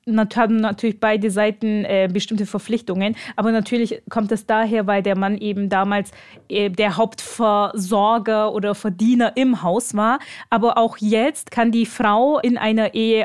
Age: 20-39